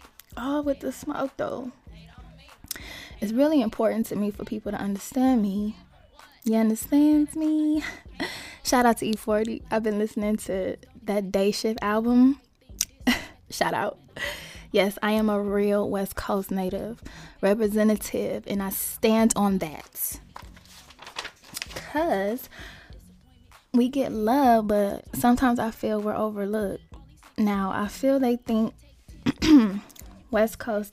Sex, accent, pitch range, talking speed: female, American, 205-250 Hz, 120 wpm